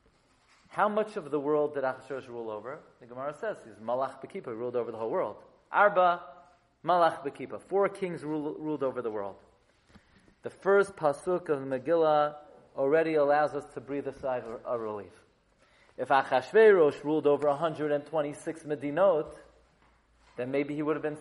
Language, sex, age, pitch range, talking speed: English, male, 30-49, 150-215 Hz, 165 wpm